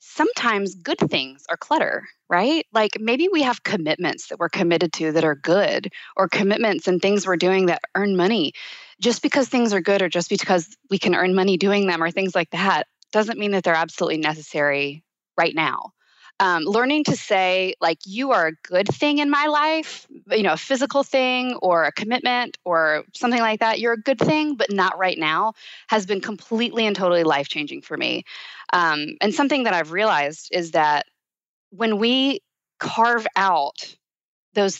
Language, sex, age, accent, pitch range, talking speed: English, female, 20-39, American, 165-225 Hz, 185 wpm